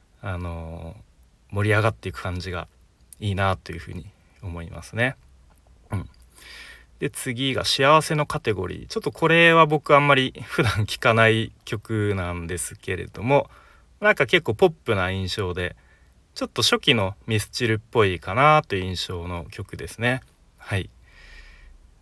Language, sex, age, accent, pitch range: Japanese, male, 30-49, native, 90-130 Hz